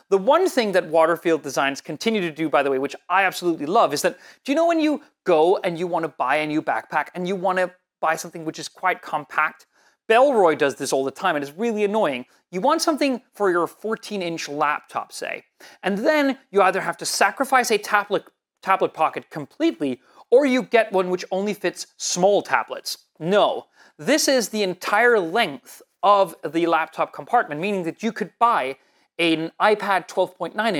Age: 30-49